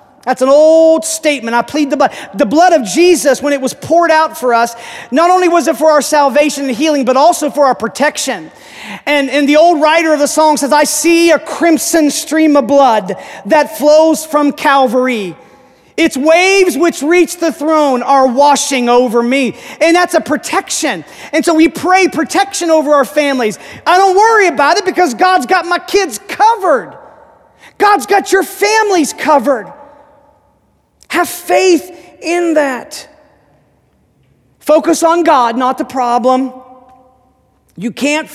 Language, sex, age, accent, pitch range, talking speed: English, male, 40-59, American, 225-315 Hz, 160 wpm